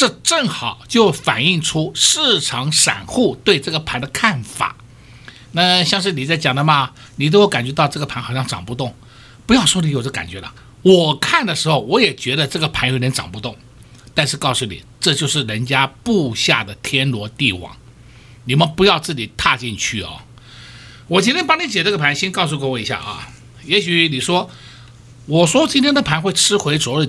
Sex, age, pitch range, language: male, 60-79, 120-180 Hz, Chinese